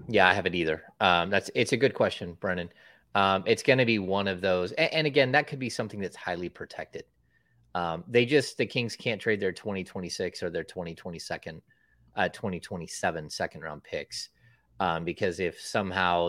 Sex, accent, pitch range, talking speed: male, American, 90-115 Hz, 190 wpm